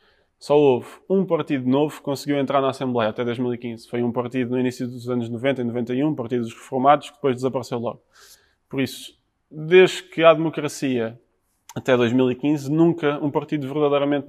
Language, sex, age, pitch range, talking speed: Portuguese, male, 20-39, 125-150 Hz, 170 wpm